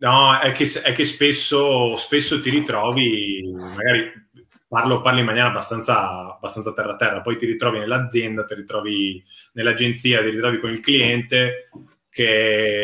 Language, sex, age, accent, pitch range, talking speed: Italian, male, 20-39, native, 105-125 Hz, 140 wpm